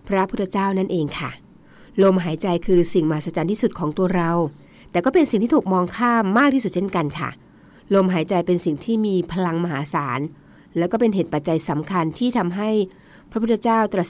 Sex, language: female, Thai